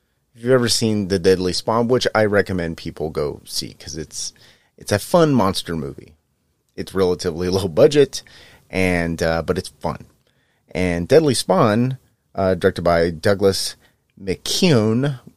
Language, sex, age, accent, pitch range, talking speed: English, male, 30-49, American, 80-95 Hz, 145 wpm